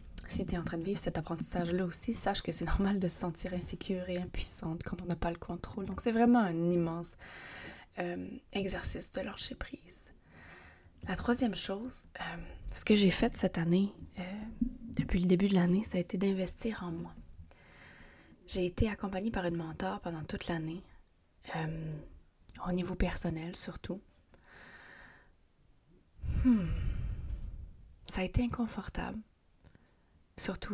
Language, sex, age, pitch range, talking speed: French, female, 20-39, 155-195 Hz, 150 wpm